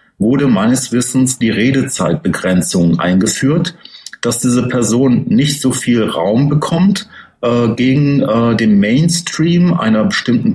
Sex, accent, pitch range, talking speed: male, German, 110-140 Hz, 120 wpm